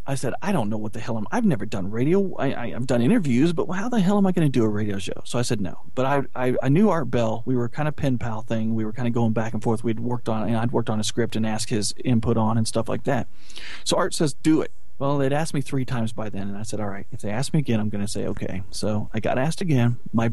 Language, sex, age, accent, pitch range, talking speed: English, male, 40-59, American, 110-130 Hz, 315 wpm